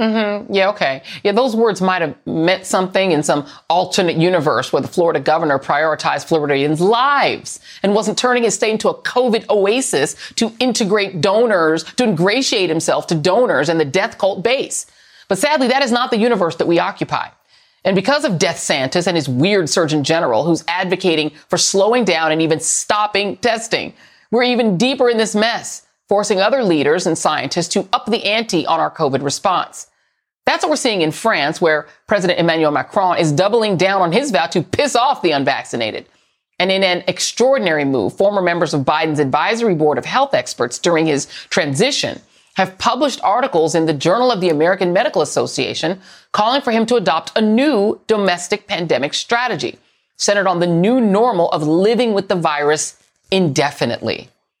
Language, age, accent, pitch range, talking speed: English, 40-59, American, 165-225 Hz, 175 wpm